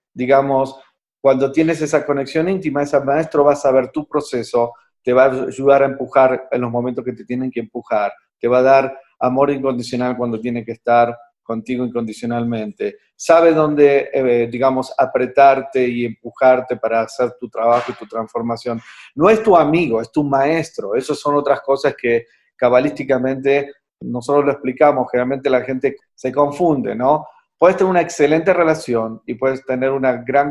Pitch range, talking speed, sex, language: 125-150 Hz, 165 wpm, male, Spanish